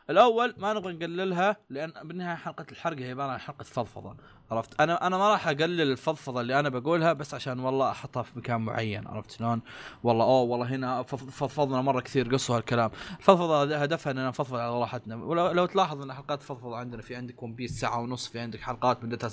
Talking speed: 195 wpm